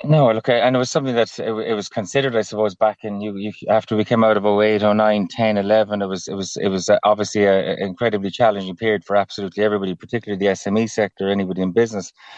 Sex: male